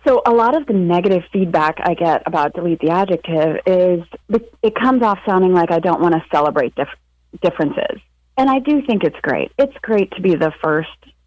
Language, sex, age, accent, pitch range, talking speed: English, female, 30-49, American, 155-195 Hz, 195 wpm